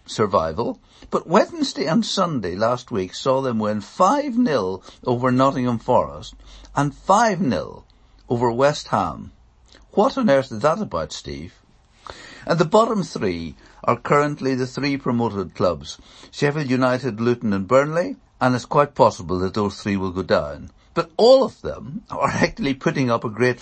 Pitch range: 115-165 Hz